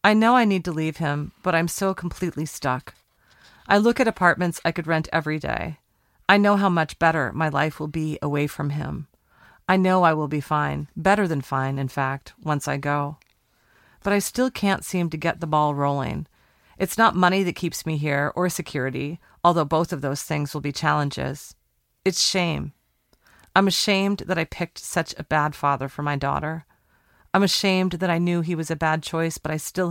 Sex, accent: female, American